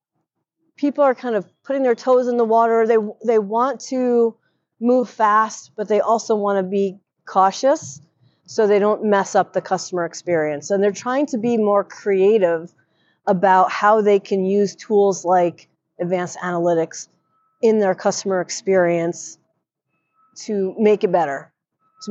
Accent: American